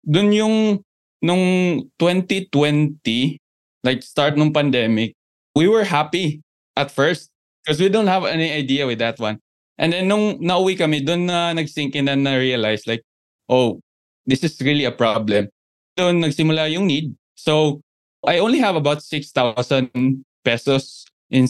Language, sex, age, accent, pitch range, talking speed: English, male, 20-39, Filipino, 125-165 Hz, 145 wpm